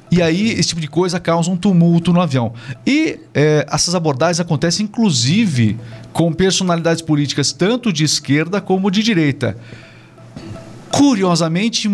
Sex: male